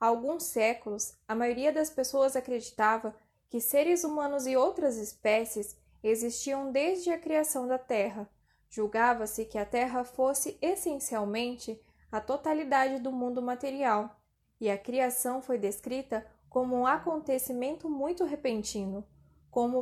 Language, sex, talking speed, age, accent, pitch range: Portuguese, female, 125 wpm, 10-29, Brazilian, 225-280 Hz